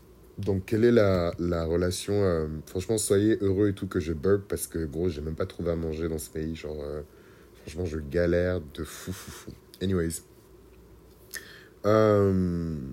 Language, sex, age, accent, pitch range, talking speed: French, male, 30-49, French, 80-95 Hz, 180 wpm